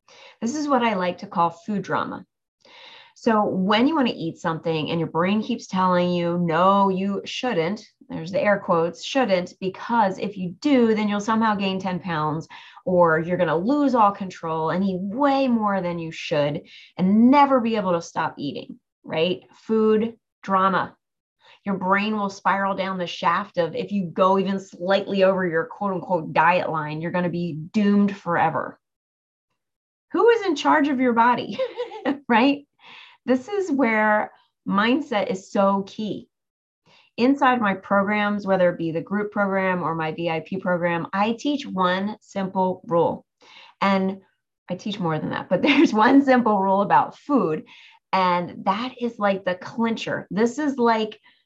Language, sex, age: English, female, 30-49